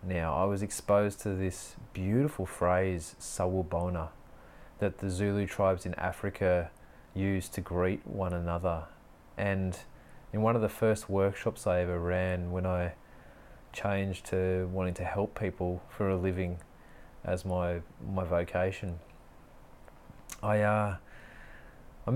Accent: Australian